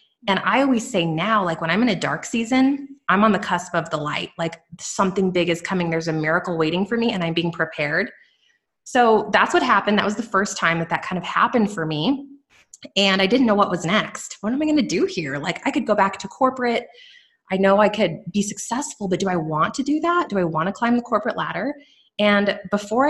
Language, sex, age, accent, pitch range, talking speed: English, female, 20-39, American, 175-255 Hz, 245 wpm